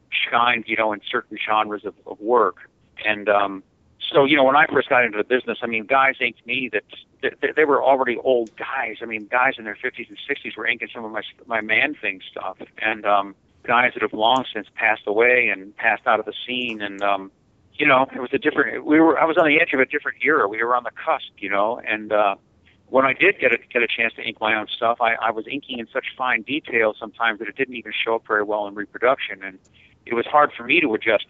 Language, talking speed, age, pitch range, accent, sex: English, 255 wpm, 50-69, 100-120 Hz, American, male